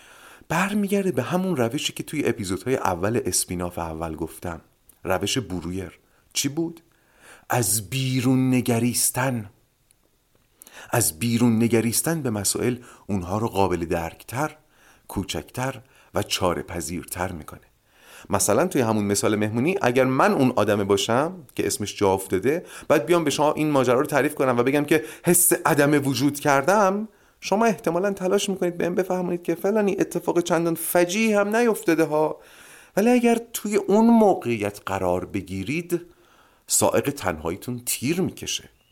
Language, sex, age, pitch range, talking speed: Persian, male, 40-59, 110-175 Hz, 135 wpm